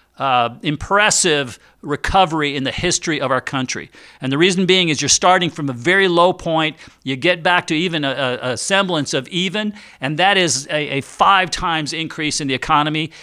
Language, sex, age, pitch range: English, male, 50-69, 145-185 Hz